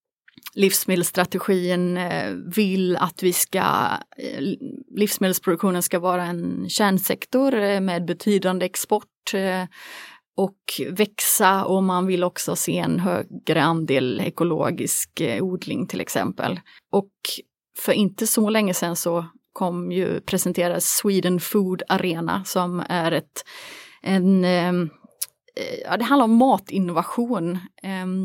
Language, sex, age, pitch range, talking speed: Swedish, female, 30-49, 180-205 Hz, 100 wpm